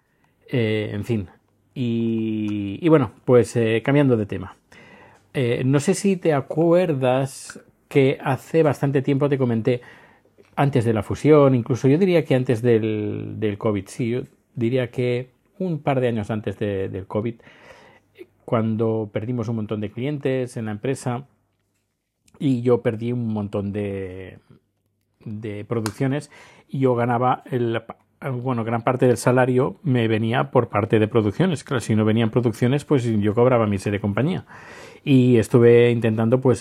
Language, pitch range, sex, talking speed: Spanish, 105-130 Hz, male, 155 wpm